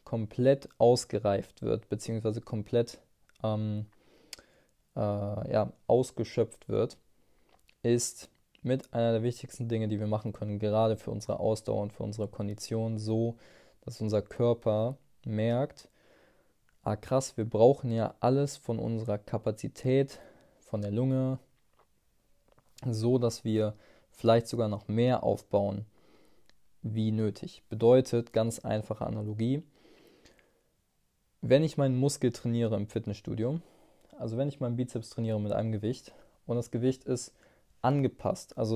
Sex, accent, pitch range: male, German, 110-125 Hz